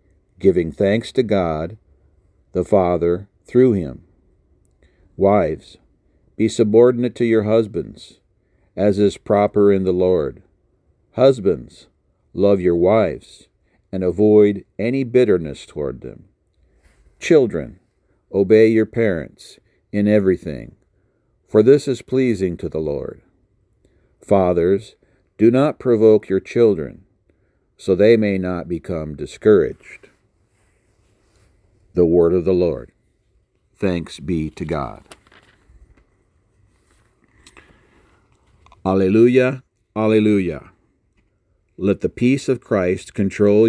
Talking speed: 100 wpm